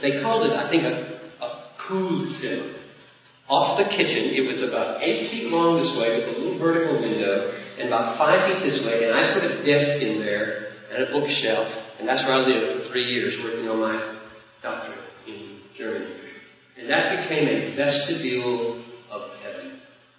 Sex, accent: male, American